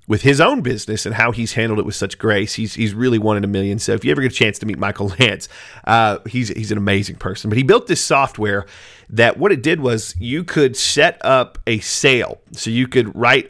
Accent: American